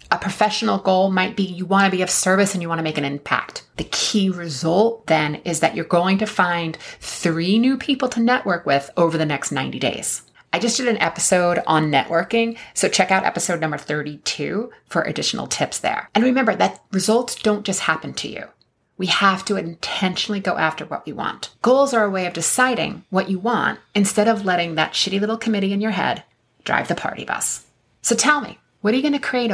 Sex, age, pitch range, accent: female, 30-49, 165-215 Hz, American